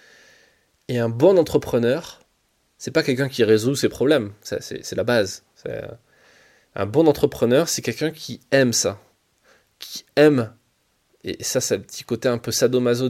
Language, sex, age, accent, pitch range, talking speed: French, male, 20-39, French, 115-140 Hz, 165 wpm